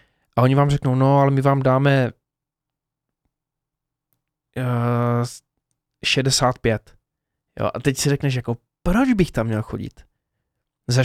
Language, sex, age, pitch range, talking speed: Czech, male, 20-39, 120-150 Hz, 120 wpm